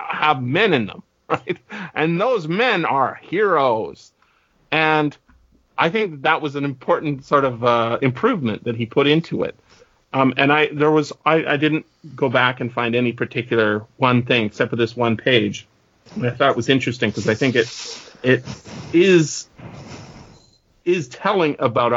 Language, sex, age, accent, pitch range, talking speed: English, male, 40-59, American, 120-150 Hz, 165 wpm